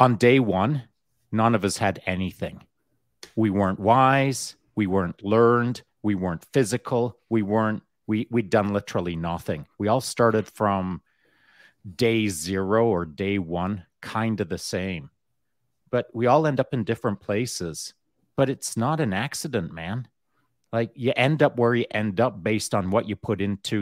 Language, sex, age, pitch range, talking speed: English, male, 30-49, 100-120 Hz, 165 wpm